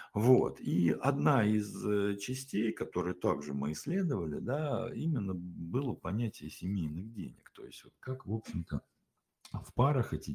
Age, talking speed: 60-79, 140 wpm